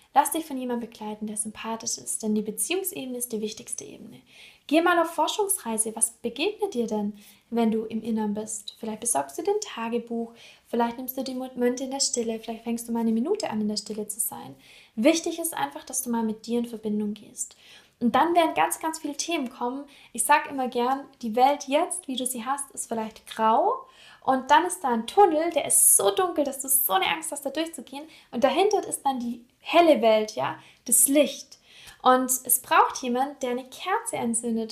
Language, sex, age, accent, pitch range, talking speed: German, female, 10-29, German, 230-300 Hz, 210 wpm